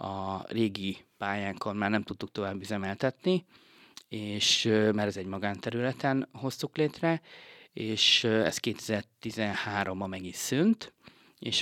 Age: 30-49